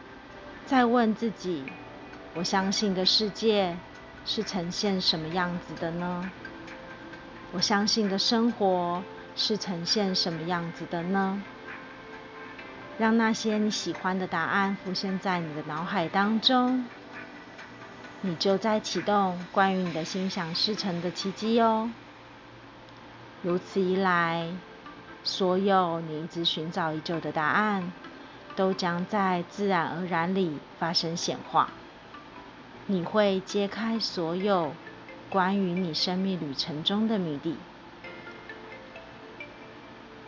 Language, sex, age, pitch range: Chinese, female, 30-49, 170-200 Hz